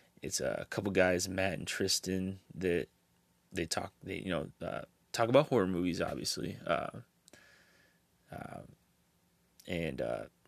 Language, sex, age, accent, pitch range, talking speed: English, male, 20-39, American, 90-95 Hz, 130 wpm